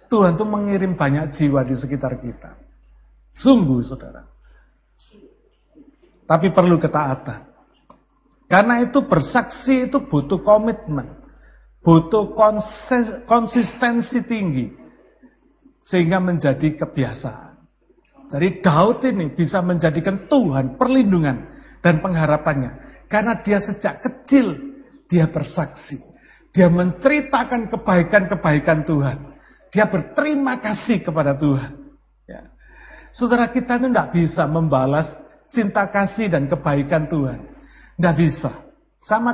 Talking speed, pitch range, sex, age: 100 wpm, 150-250 Hz, male, 50-69